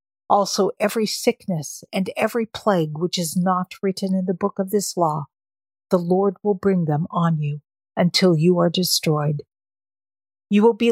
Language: English